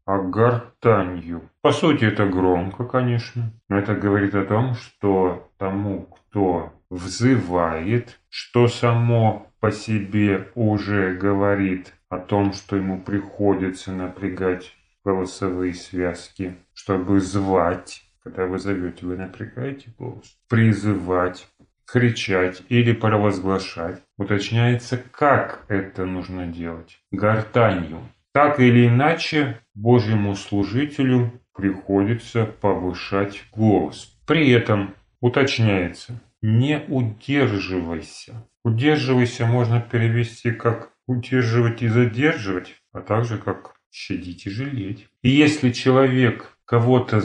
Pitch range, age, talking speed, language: 95-120 Hz, 30-49, 100 wpm, Russian